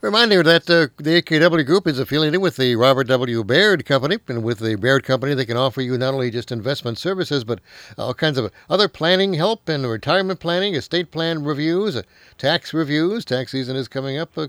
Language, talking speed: English, 205 wpm